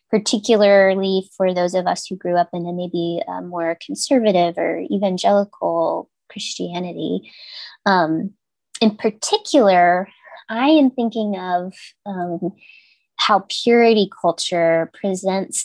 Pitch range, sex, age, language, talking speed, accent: 185-240 Hz, female, 20-39, English, 110 wpm, American